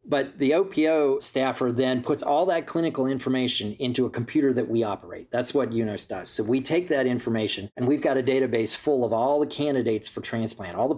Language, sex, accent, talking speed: English, male, American, 215 wpm